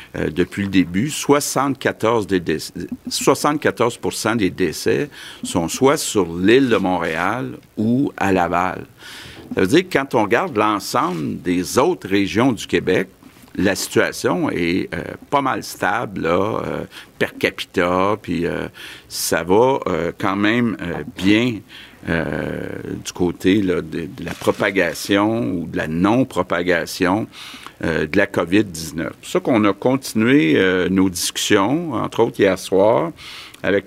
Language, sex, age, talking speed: French, male, 50-69, 140 wpm